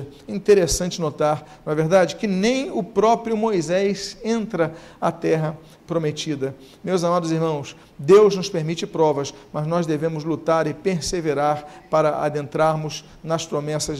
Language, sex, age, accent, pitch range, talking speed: Portuguese, male, 50-69, Brazilian, 160-200 Hz, 135 wpm